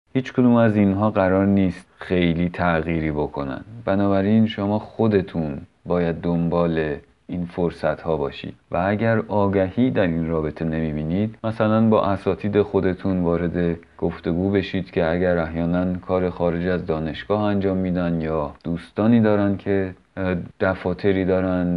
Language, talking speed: Persian, 130 wpm